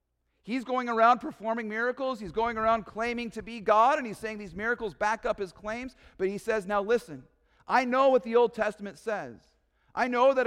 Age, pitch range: 40-59, 165-230 Hz